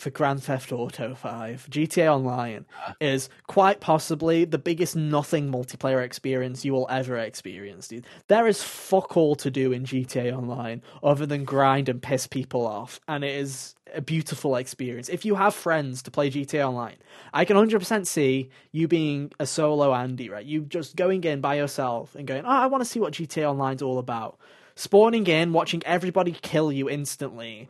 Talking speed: 185 wpm